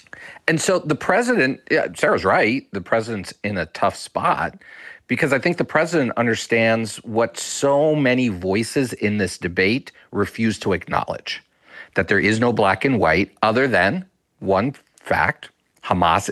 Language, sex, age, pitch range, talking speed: English, male, 40-59, 105-135 Hz, 150 wpm